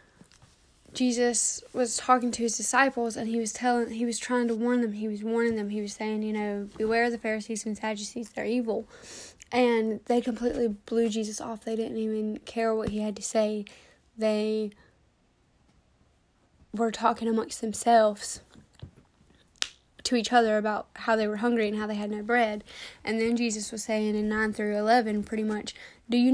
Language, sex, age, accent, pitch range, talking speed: English, female, 10-29, American, 220-245 Hz, 180 wpm